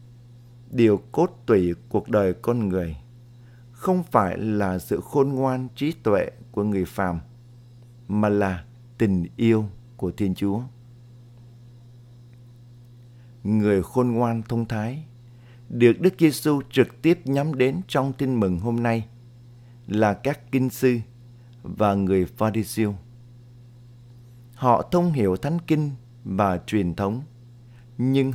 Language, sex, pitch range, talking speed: Vietnamese, male, 110-120 Hz, 125 wpm